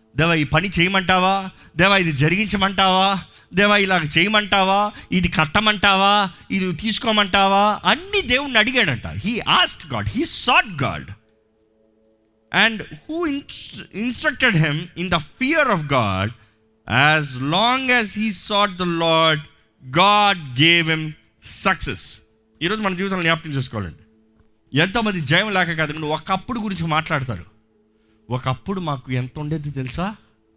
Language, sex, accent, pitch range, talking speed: Telugu, male, native, 140-205 Hz, 120 wpm